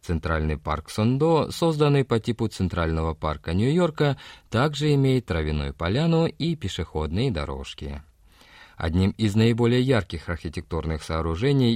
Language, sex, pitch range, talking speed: Russian, male, 80-130 Hz, 110 wpm